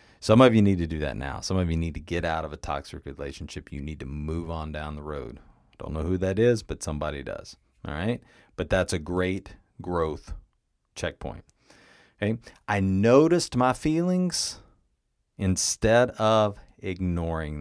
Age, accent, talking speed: 40-59, American, 175 wpm